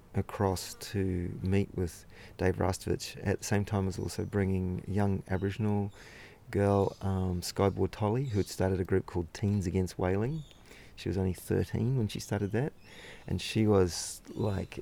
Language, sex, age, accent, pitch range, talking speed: English, male, 40-59, Australian, 95-105 Hz, 165 wpm